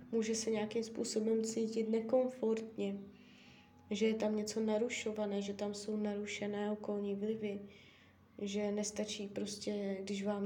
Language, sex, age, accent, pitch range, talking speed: Czech, female, 20-39, native, 200-225 Hz, 125 wpm